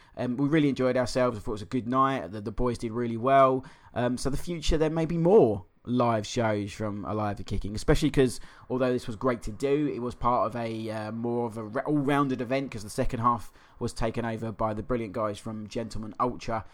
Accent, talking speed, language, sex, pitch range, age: British, 235 wpm, English, male, 105-125 Hz, 20-39